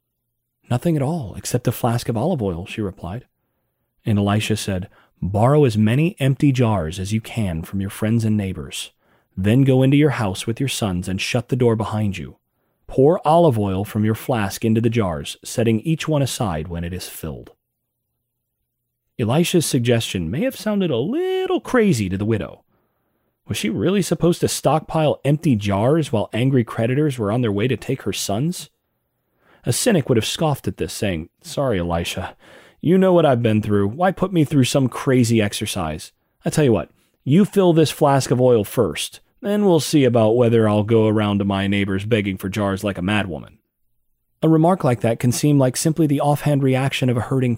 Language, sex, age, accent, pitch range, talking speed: English, male, 30-49, American, 105-145 Hz, 195 wpm